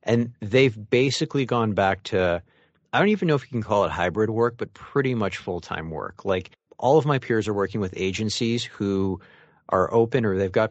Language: English